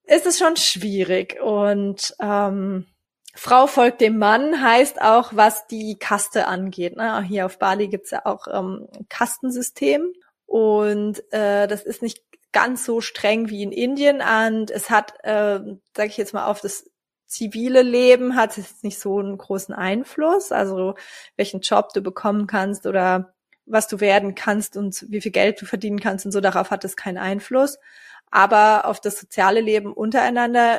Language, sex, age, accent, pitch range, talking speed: German, female, 20-39, German, 195-230 Hz, 170 wpm